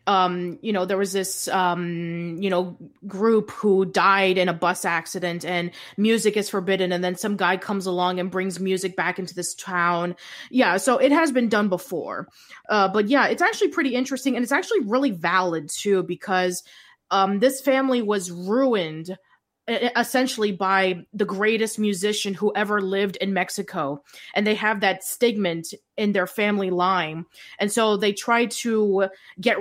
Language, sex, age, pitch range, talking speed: English, female, 20-39, 180-215 Hz, 170 wpm